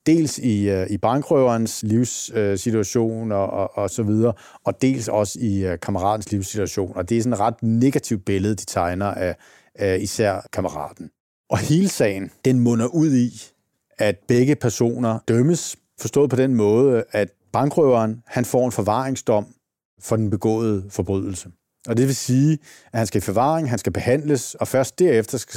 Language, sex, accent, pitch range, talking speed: Danish, male, native, 100-130 Hz, 160 wpm